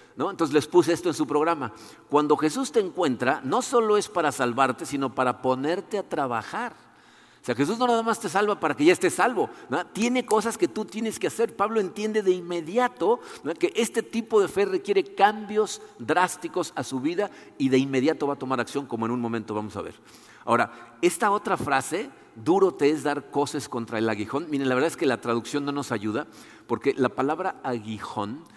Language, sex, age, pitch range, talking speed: Spanish, male, 50-69, 130-210 Hz, 210 wpm